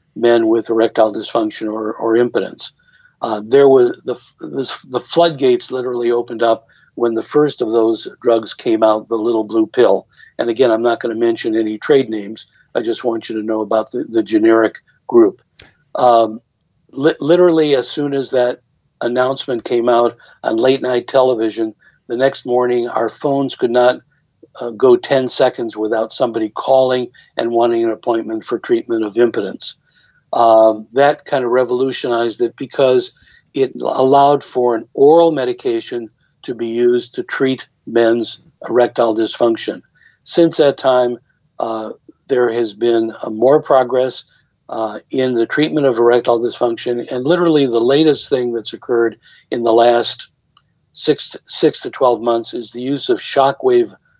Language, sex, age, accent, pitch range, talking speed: English, male, 50-69, American, 115-140 Hz, 160 wpm